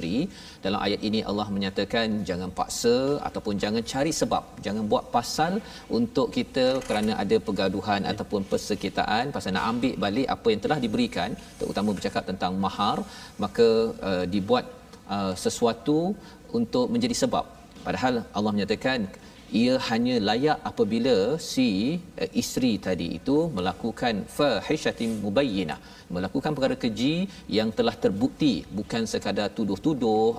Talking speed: 130 wpm